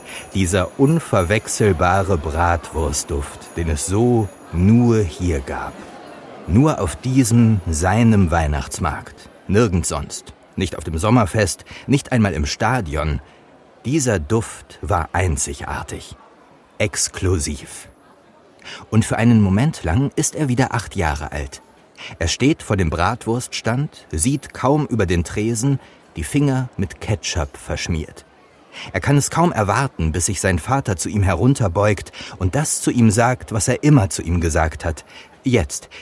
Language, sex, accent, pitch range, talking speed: German, male, German, 85-130 Hz, 135 wpm